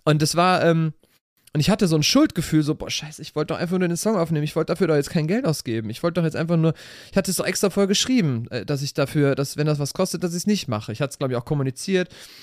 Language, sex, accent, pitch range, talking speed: German, male, German, 135-175 Hz, 305 wpm